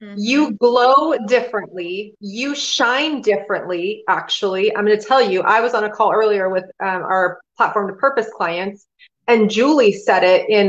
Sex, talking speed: female, 170 wpm